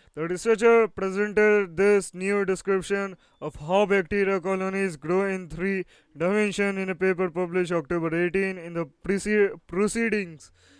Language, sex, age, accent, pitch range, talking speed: English, male, 20-39, Indian, 175-195 Hz, 130 wpm